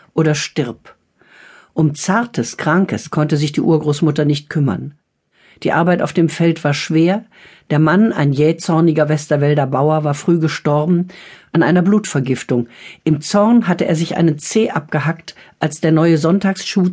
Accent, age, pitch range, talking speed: German, 50-69, 150-180 Hz, 150 wpm